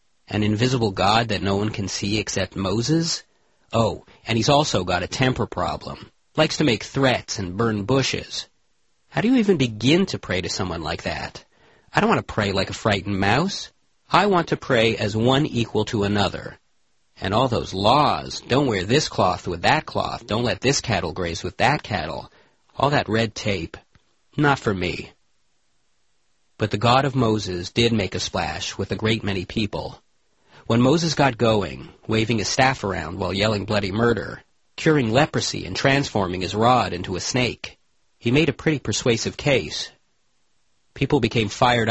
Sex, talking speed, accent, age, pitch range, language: male, 180 wpm, American, 40-59, 95-125 Hz, English